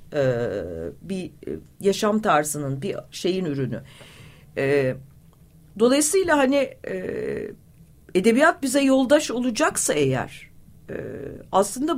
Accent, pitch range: native, 190-265 Hz